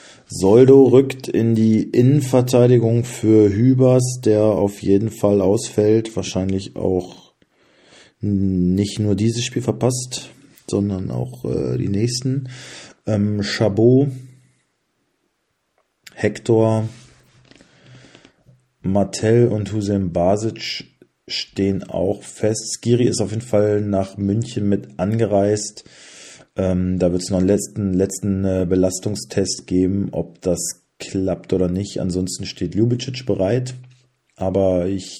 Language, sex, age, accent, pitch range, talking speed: German, male, 40-59, German, 90-115 Hz, 110 wpm